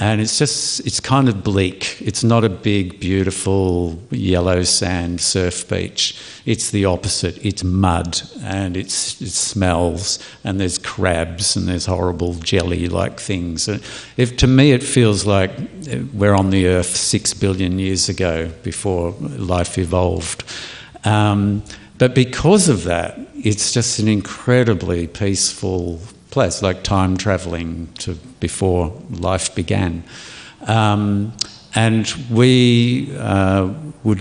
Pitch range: 90-105 Hz